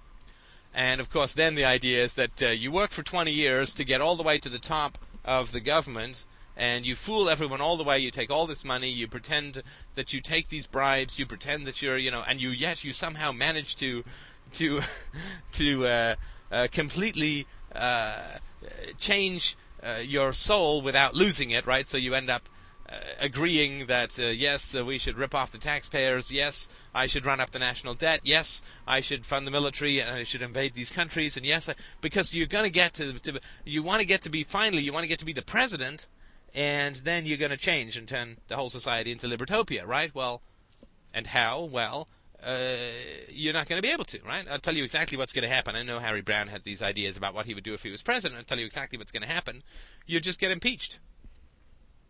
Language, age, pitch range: English, 30-49, 125-155 Hz